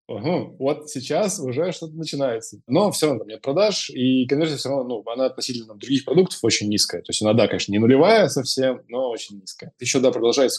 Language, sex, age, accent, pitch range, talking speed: Russian, male, 20-39, native, 115-155 Hz, 215 wpm